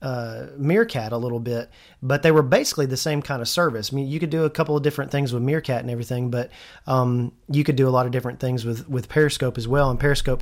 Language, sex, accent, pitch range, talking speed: English, male, American, 125-155 Hz, 260 wpm